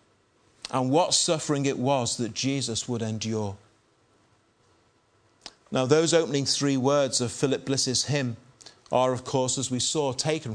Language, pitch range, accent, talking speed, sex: English, 115-145 Hz, British, 140 wpm, male